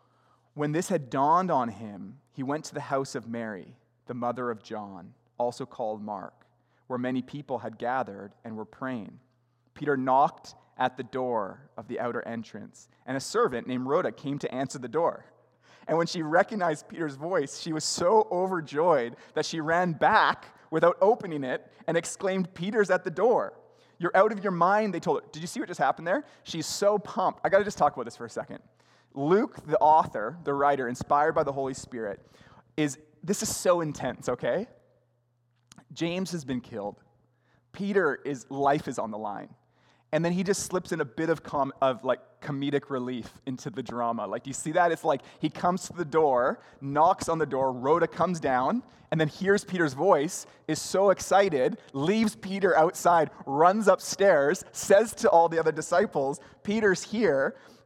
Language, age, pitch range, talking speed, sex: English, 30-49, 130-180 Hz, 190 wpm, male